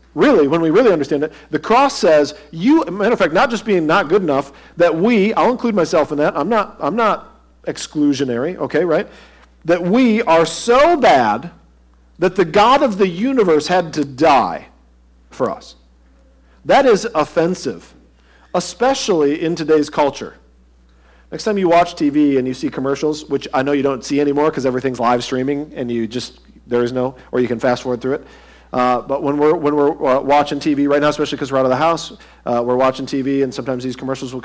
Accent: American